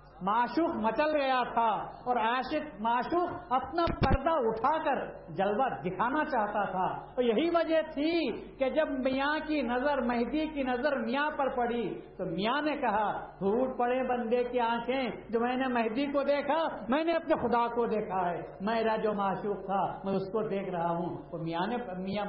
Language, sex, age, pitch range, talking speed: Urdu, male, 60-79, 185-275 Hz, 175 wpm